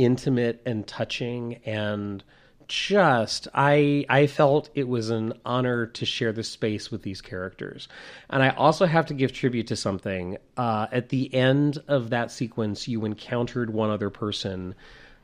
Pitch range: 110-135 Hz